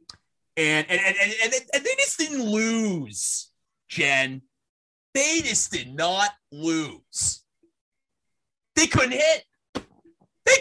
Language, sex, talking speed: English, male, 105 wpm